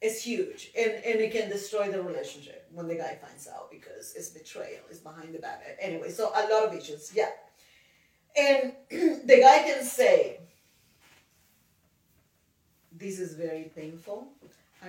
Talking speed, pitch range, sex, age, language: 155 wpm, 165-220 Hz, female, 30-49, English